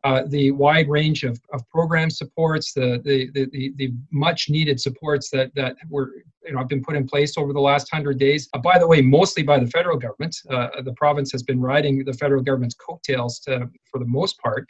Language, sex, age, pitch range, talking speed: English, male, 40-59, 135-165 Hz, 210 wpm